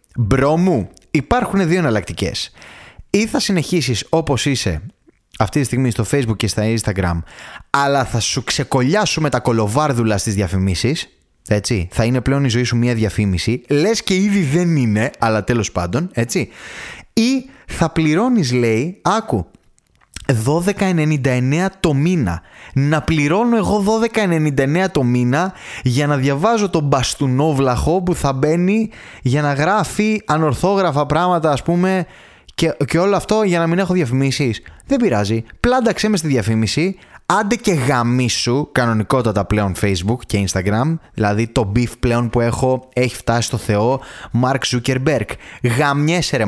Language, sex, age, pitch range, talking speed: Greek, male, 20-39, 115-170 Hz, 140 wpm